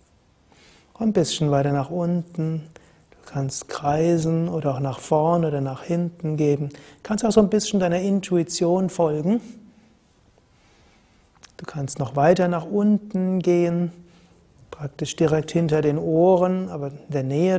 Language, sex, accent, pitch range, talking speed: German, male, German, 150-180 Hz, 140 wpm